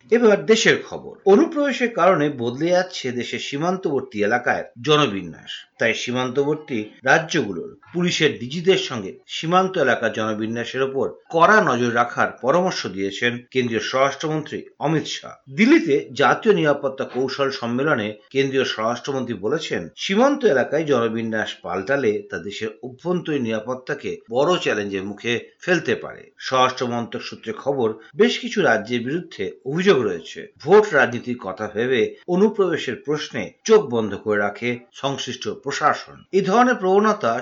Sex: male